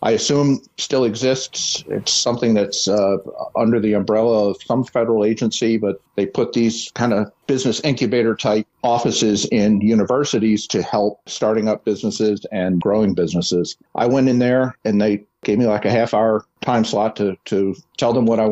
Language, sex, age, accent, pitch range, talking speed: English, male, 50-69, American, 105-120 Hz, 180 wpm